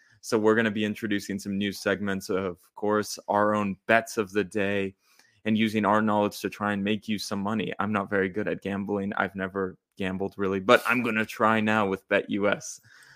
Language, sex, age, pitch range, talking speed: English, male, 20-39, 95-110 Hz, 210 wpm